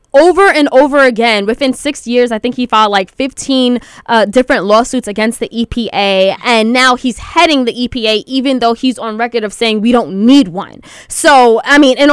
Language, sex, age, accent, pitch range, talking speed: English, female, 10-29, American, 235-295 Hz, 200 wpm